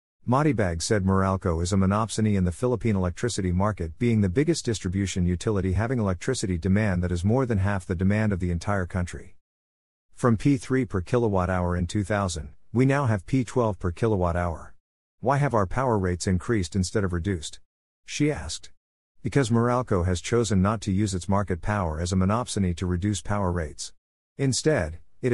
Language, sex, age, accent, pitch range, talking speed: English, male, 50-69, American, 90-110 Hz, 175 wpm